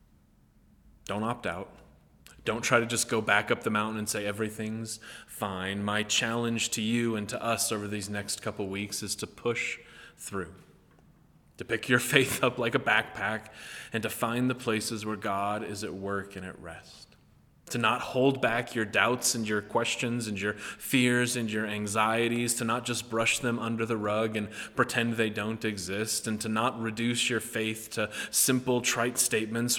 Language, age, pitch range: English, 20-39, 105-120 Hz